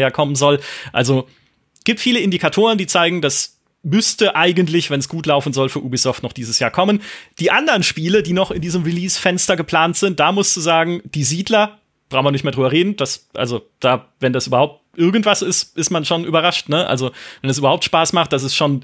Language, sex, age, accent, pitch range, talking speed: German, male, 30-49, German, 140-185 Hz, 215 wpm